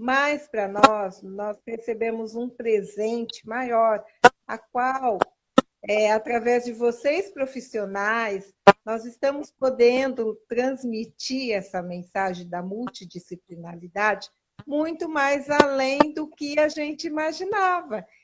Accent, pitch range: Brazilian, 215-275 Hz